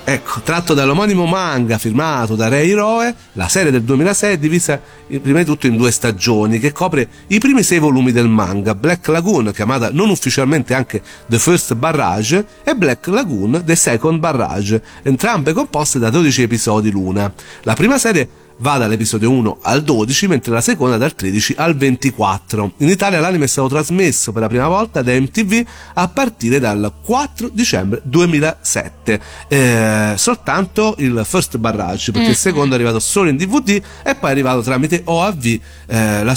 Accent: native